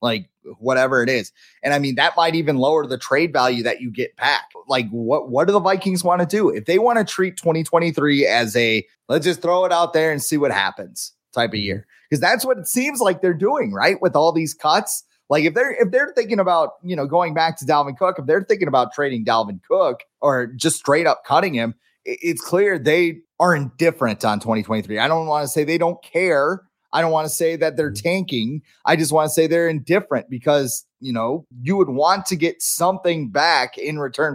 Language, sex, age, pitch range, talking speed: English, male, 30-49, 135-170 Hz, 230 wpm